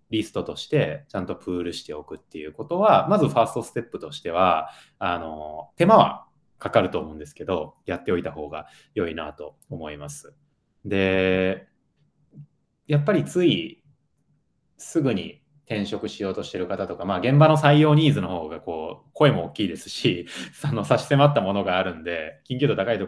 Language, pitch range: Japanese, 95-145 Hz